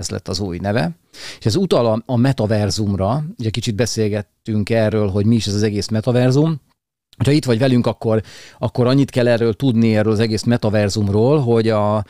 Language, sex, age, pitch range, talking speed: Hungarian, male, 40-59, 105-120 Hz, 185 wpm